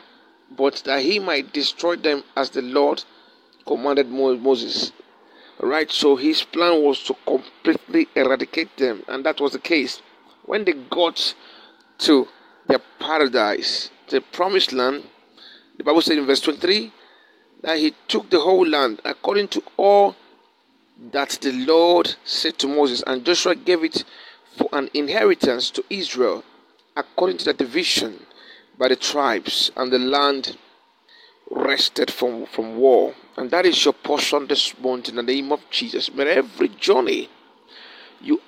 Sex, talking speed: male, 145 wpm